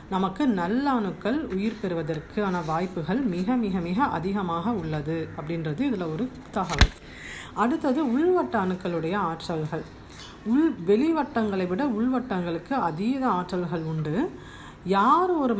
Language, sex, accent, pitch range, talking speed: Tamil, female, native, 175-245 Hz, 110 wpm